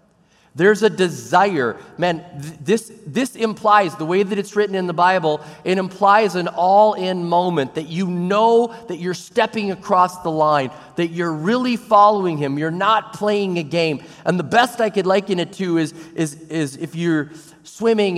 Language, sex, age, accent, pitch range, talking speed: English, male, 30-49, American, 160-215 Hz, 170 wpm